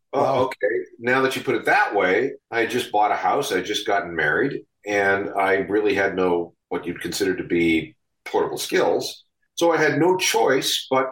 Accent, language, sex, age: American, English, male, 50-69